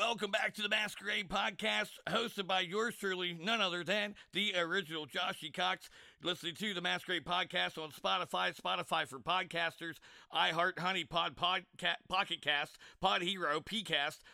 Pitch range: 160-190 Hz